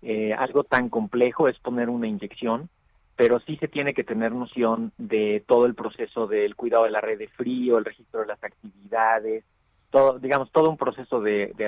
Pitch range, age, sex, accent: 110-130 Hz, 40-59, male, Mexican